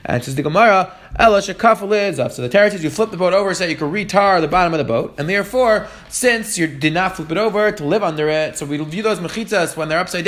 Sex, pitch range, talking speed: male, 150-195 Hz, 270 wpm